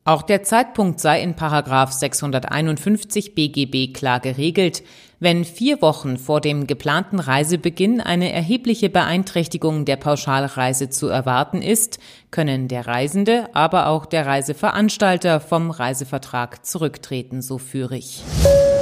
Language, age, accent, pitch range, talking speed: German, 30-49, German, 140-185 Hz, 120 wpm